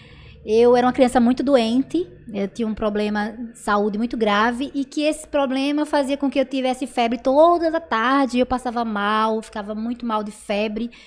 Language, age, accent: Portuguese, 20-39, Brazilian